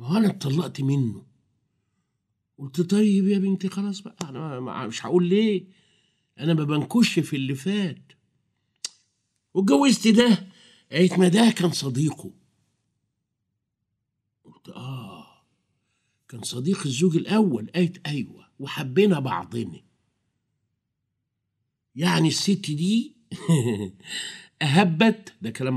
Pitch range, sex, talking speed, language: 125-175 Hz, male, 100 wpm, Arabic